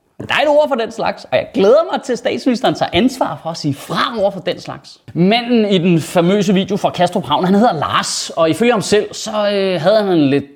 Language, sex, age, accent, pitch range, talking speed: Danish, male, 30-49, native, 155-220 Hz, 250 wpm